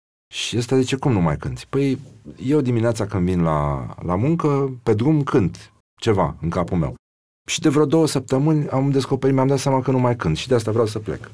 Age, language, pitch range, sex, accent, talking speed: 30-49, Romanian, 85-120 Hz, male, native, 220 wpm